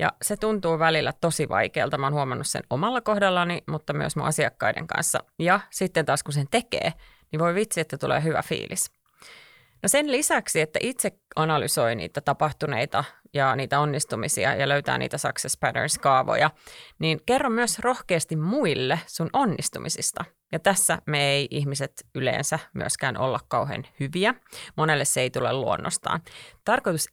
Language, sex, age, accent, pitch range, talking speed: Finnish, female, 30-49, native, 150-195 Hz, 155 wpm